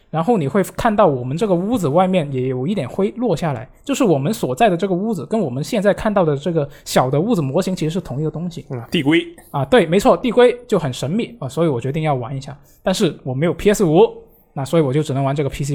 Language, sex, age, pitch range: Japanese, male, 20-39, 140-190 Hz